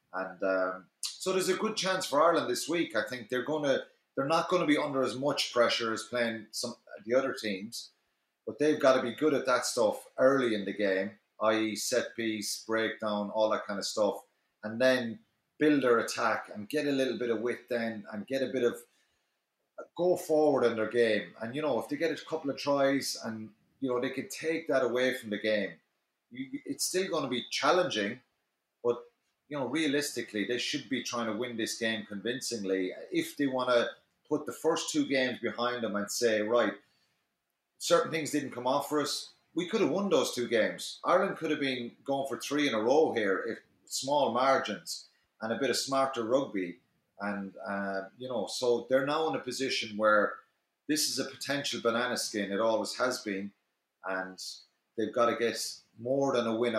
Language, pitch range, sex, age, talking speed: English, 110-145 Hz, male, 30-49, 205 wpm